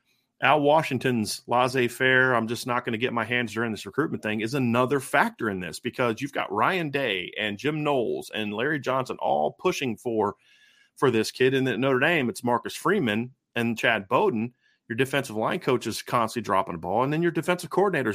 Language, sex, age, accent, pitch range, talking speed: English, male, 30-49, American, 115-140 Hz, 200 wpm